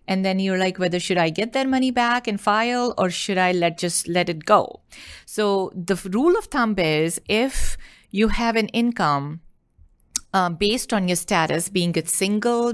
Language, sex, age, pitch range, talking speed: English, female, 30-49, 170-215 Hz, 190 wpm